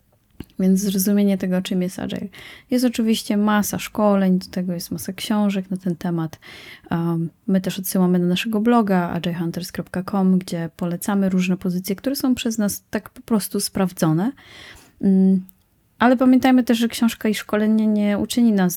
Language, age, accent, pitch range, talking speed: Polish, 20-39, native, 175-205 Hz, 150 wpm